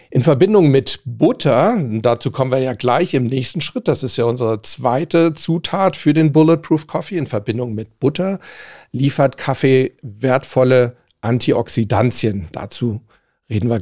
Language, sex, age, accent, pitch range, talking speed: German, male, 40-59, German, 125-160 Hz, 145 wpm